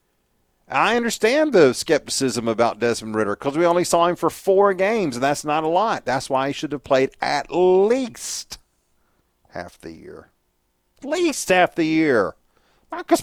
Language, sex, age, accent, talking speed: English, male, 40-59, American, 170 wpm